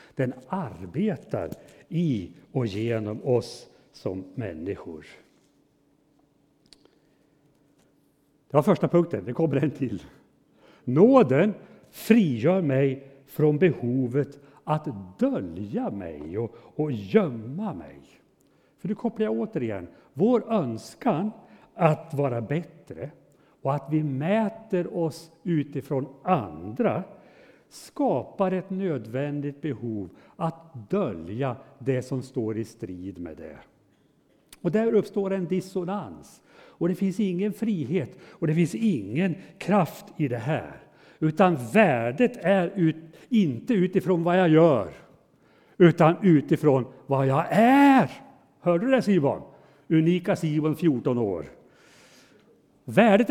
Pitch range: 135-200 Hz